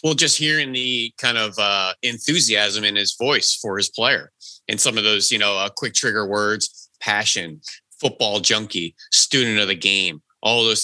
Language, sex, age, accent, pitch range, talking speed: English, male, 30-49, American, 100-120 Hz, 185 wpm